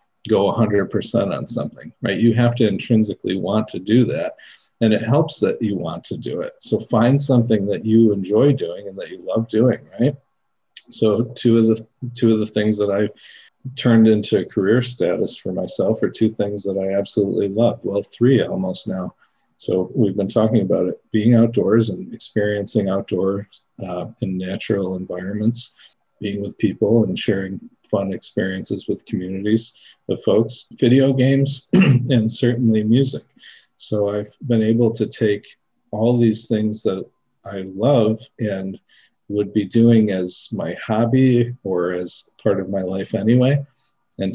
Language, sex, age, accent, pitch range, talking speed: English, male, 50-69, American, 100-120 Hz, 165 wpm